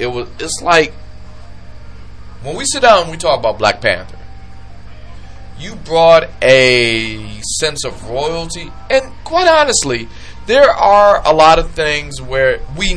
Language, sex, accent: English, male, American